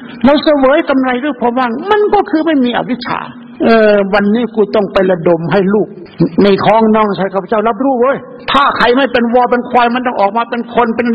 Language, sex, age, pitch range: Thai, male, 60-79, 230-300 Hz